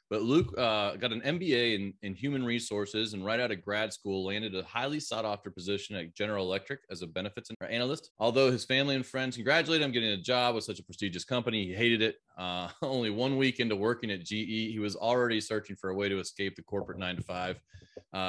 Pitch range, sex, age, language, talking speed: 95-120 Hz, male, 20-39, English, 225 wpm